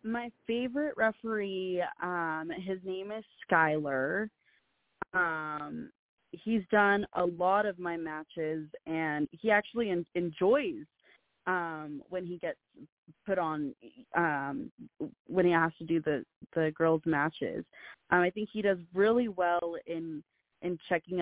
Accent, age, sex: American, 20-39, female